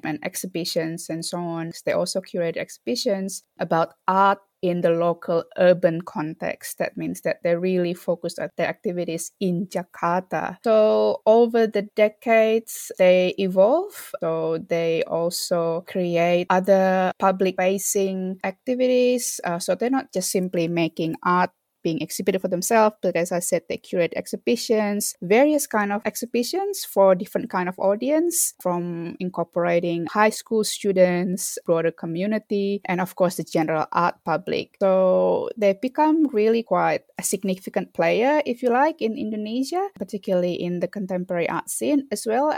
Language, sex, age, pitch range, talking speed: English, female, 20-39, 175-220 Hz, 145 wpm